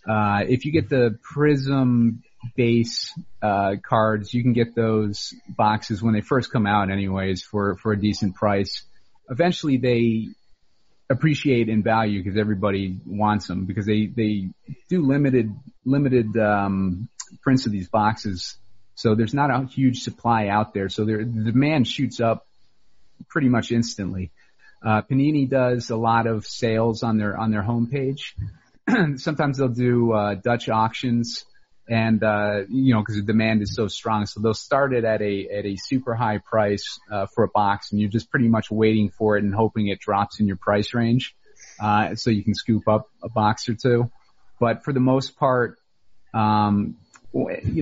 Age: 30-49